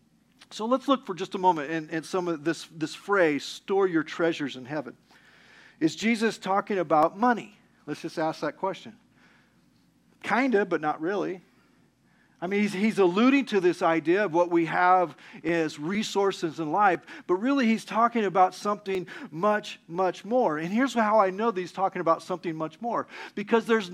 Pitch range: 180-250 Hz